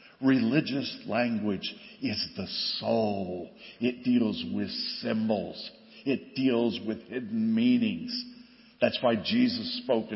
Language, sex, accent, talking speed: English, male, American, 105 wpm